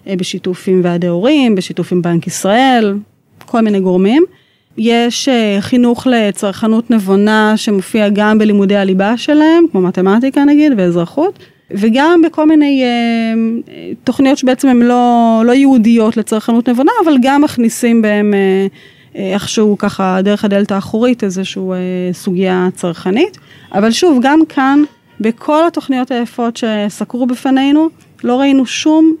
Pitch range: 195-255 Hz